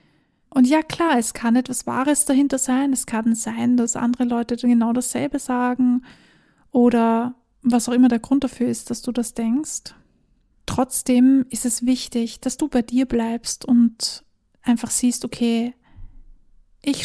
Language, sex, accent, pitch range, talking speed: German, female, German, 235-265 Hz, 155 wpm